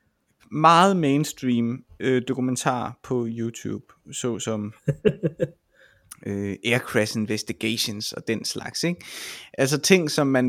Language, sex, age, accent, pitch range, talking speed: Danish, male, 20-39, native, 115-155 Hz, 110 wpm